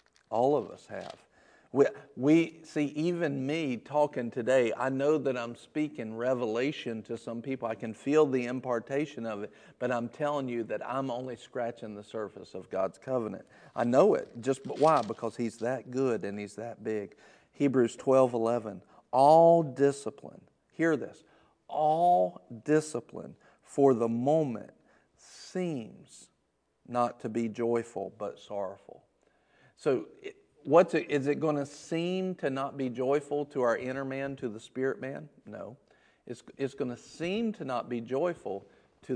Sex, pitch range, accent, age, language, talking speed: male, 120-155 Hz, American, 50-69, English, 155 wpm